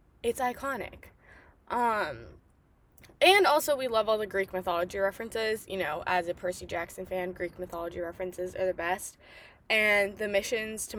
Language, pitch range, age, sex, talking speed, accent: English, 190-230 Hz, 10-29, female, 160 wpm, American